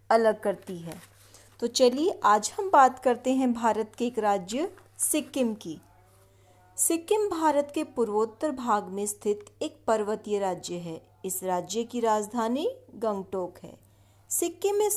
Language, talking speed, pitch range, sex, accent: Hindi, 140 wpm, 195-275 Hz, female, native